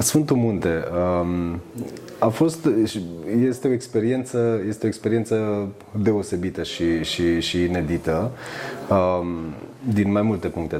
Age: 30-49